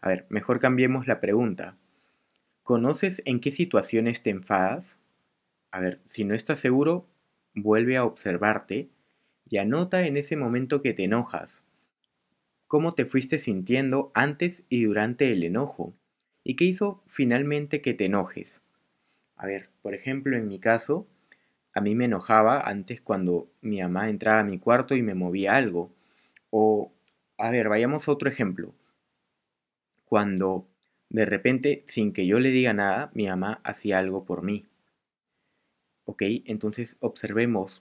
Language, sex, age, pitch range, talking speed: Spanish, male, 20-39, 100-130 Hz, 150 wpm